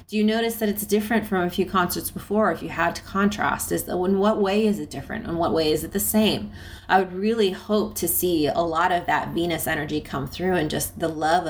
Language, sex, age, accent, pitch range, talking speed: English, female, 30-49, American, 160-200 Hz, 255 wpm